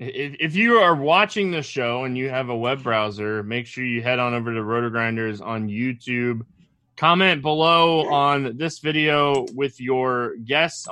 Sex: male